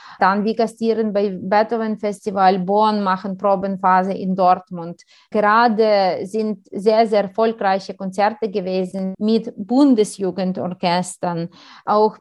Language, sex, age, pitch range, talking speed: German, female, 30-49, 200-235 Hz, 100 wpm